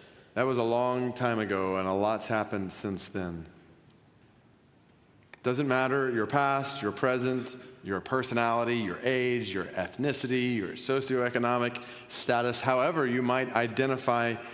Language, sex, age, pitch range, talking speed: English, male, 40-59, 105-125 Hz, 130 wpm